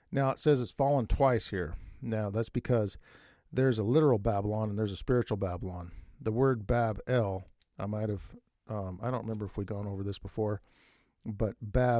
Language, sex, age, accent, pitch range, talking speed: English, male, 50-69, American, 95-120 Hz, 180 wpm